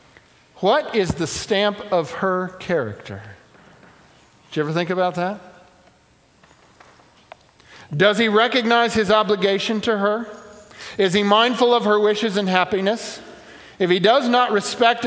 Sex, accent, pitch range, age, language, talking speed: male, American, 155-205 Hz, 50-69, English, 130 wpm